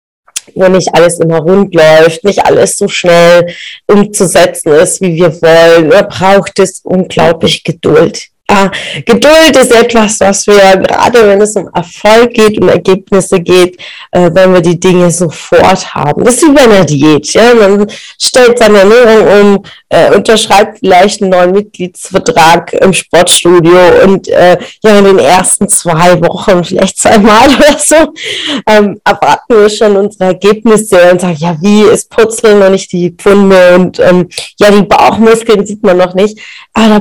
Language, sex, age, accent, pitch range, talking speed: German, female, 30-49, German, 180-225 Hz, 160 wpm